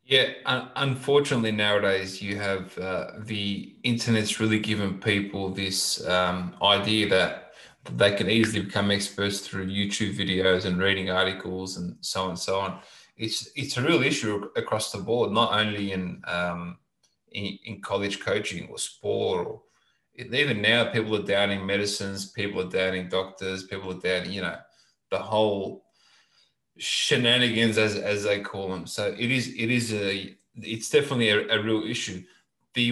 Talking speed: 160 wpm